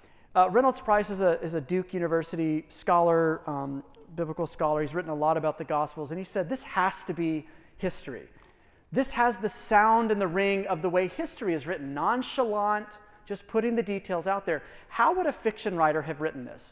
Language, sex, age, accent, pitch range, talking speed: English, male, 30-49, American, 165-235 Hz, 195 wpm